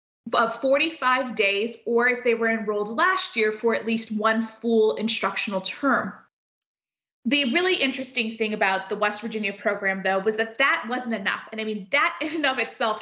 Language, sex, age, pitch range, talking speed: English, female, 20-39, 215-265 Hz, 185 wpm